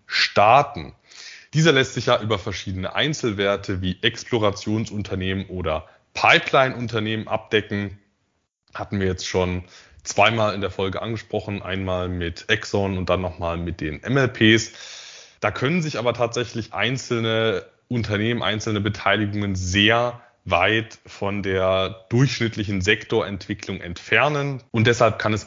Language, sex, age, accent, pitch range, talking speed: German, male, 20-39, German, 95-115 Hz, 120 wpm